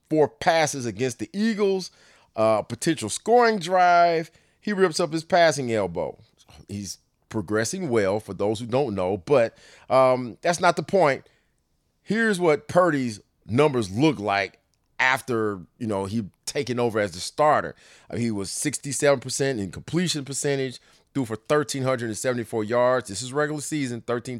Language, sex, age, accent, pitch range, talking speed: English, male, 30-49, American, 110-140 Hz, 145 wpm